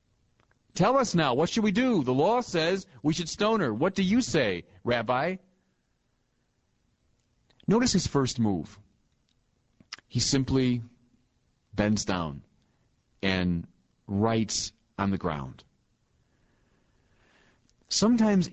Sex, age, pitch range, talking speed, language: male, 40-59, 105-155 Hz, 105 wpm, English